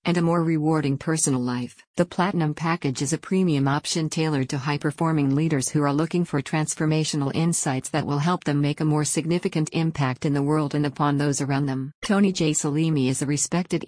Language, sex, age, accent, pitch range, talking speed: English, female, 50-69, American, 145-165 Hz, 205 wpm